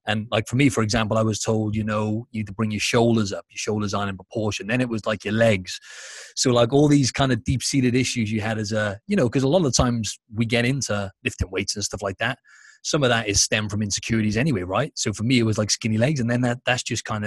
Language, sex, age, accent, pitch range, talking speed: English, male, 30-49, British, 110-125 Hz, 285 wpm